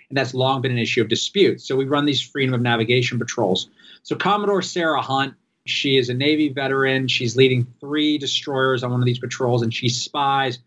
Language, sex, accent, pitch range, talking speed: English, male, American, 125-145 Hz, 210 wpm